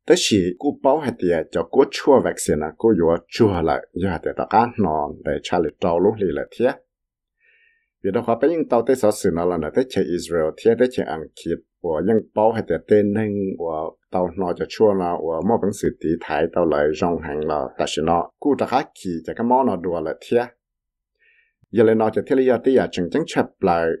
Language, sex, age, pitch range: English, male, 60-79, 90-130 Hz